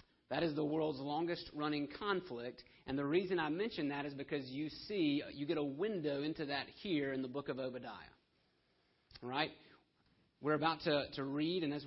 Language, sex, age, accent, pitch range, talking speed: English, male, 40-59, American, 125-150 Hz, 185 wpm